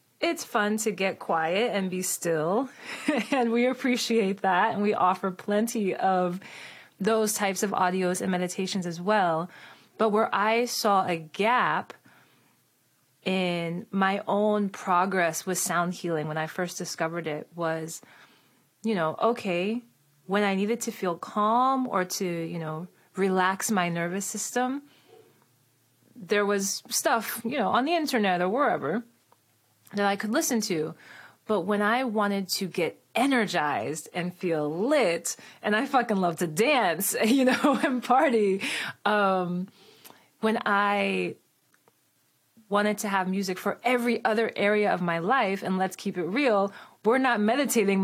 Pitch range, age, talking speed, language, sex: 180-230 Hz, 30-49, 145 wpm, English, female